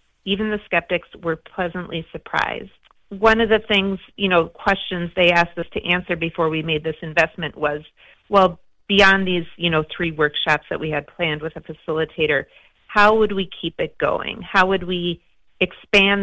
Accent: American